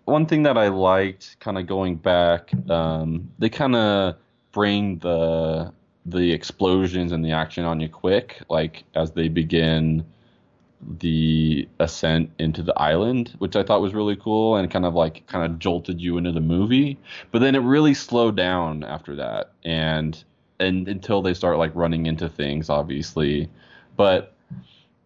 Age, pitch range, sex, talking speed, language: 20-39, 80-110 Hz, male, 165 wpm, English